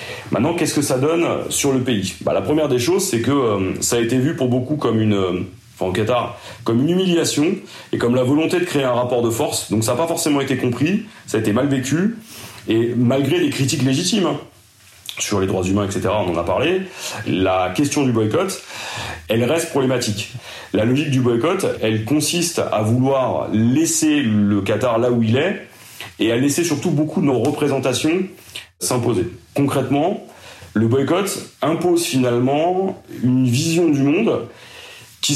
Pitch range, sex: 105-140 Hz, male